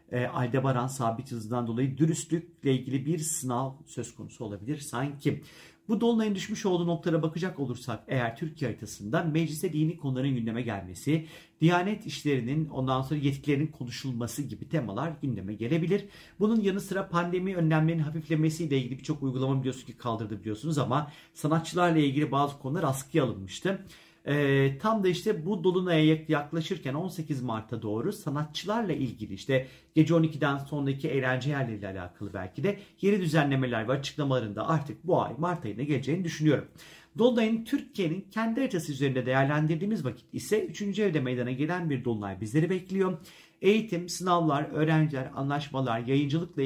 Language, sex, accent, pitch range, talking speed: Turkish, male, native, 130-170 Hz, 140 wpm